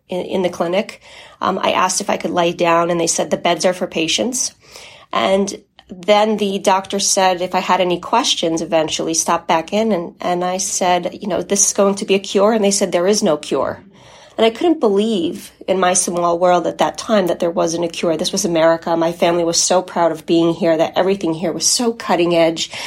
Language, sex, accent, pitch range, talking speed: English, female, American, 165-195 Hz, 230 wpm